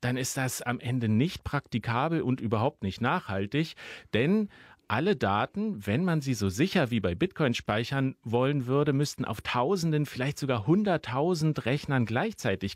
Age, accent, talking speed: 40-59, German, 155 wpm